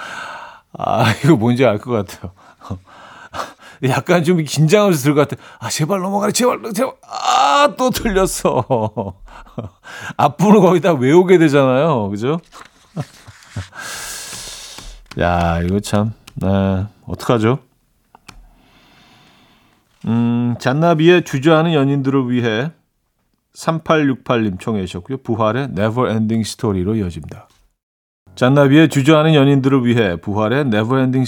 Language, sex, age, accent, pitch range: Korean, male, 40-59, native, 100-145 Hz